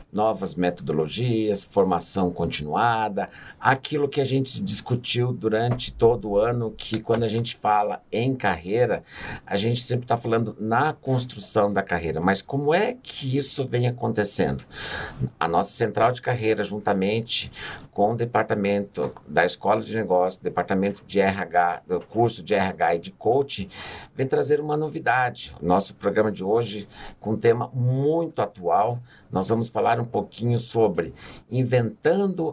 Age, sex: 60-79, male